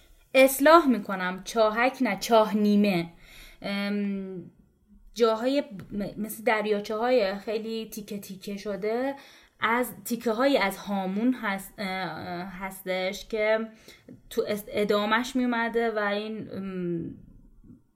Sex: female